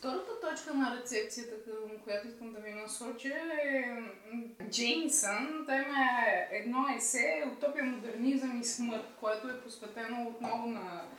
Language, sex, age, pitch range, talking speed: Bulgarian, female, 20-39, 215-275 Hz, 130 wpm